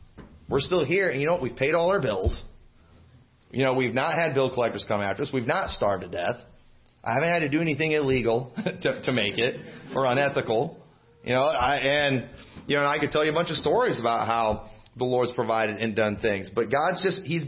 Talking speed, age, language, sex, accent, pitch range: 225 wpm, 30-49, English, male, American, 140-200 Hz